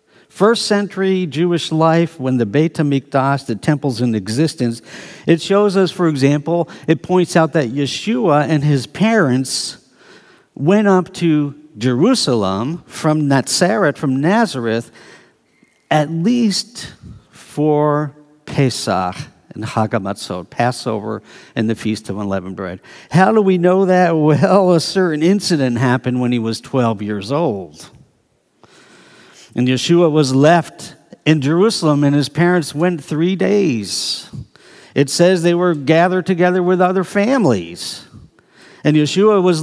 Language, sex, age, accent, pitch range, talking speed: English, male, 60-79, American, 130-180 Hz, 130 wpm